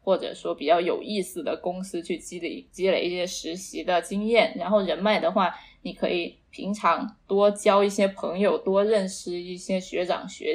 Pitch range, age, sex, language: 185-220 Hz, 10-29, female, Chinese